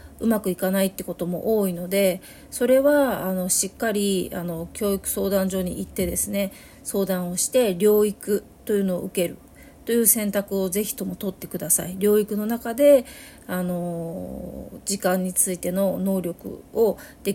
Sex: female